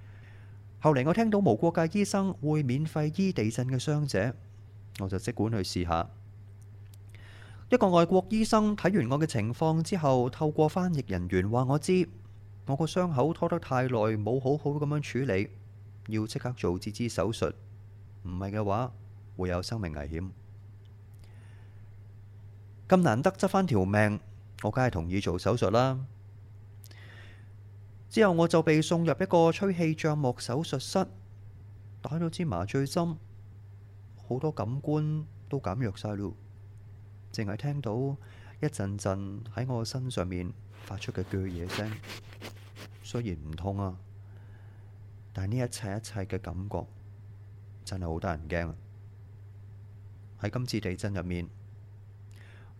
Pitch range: 100-130 Hz